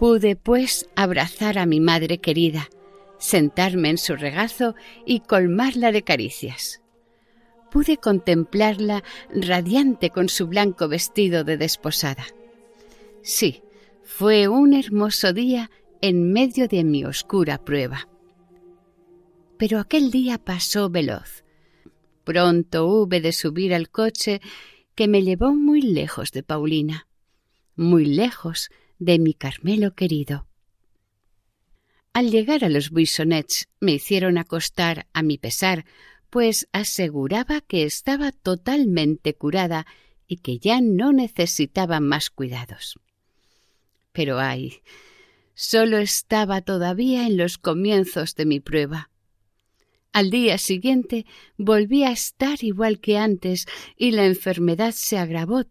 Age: 50-69